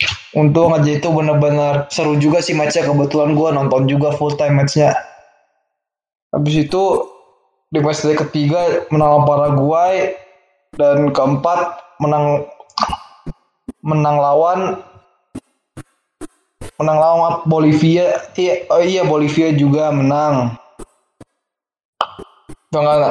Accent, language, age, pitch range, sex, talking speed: native, Indonesian, 20-39, 145-165 Hz, male, 95 wpm